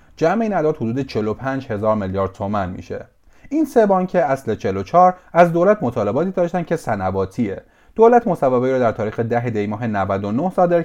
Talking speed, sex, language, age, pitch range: 165 wpm, male, Persian, 30-49, 105-175 Hz